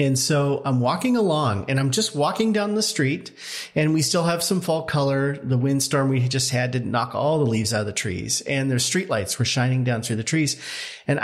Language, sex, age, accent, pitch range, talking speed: English, male, 40-59, American, 125-155 Hz, 230 wpm